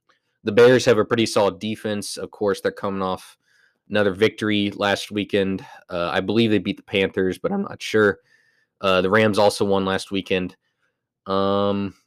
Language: English